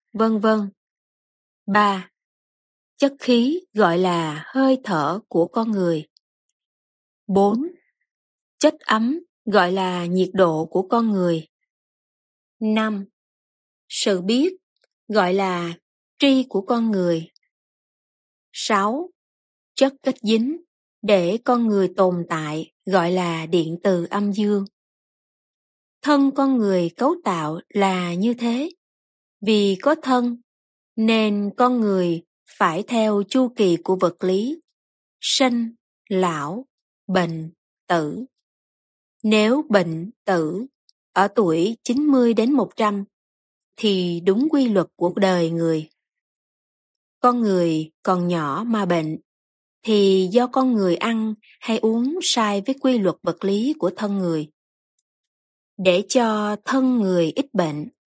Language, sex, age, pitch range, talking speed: Vietnamese, female, 20-39, 175-245 Hz, 120 wpm